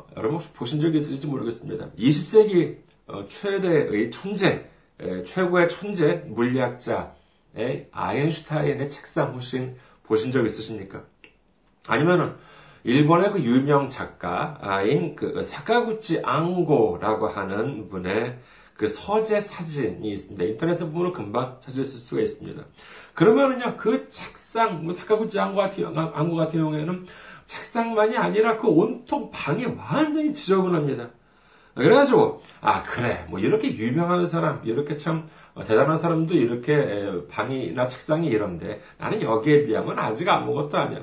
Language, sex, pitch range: Korean, male, 125-180 Hz